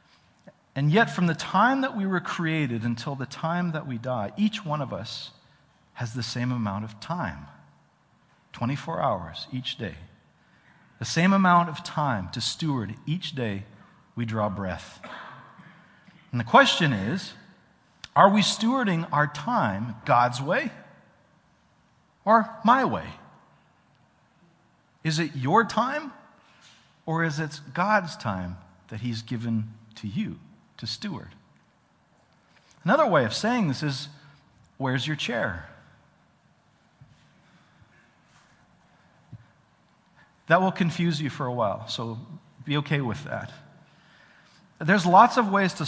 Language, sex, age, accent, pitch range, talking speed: English, male, 50-69, American, 120-175 Hz, 125 wpm